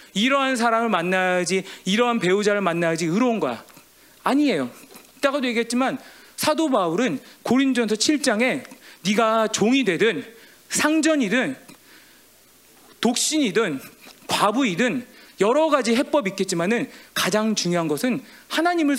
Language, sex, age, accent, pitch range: Korean, male, 40-59, native, 210-275 Hz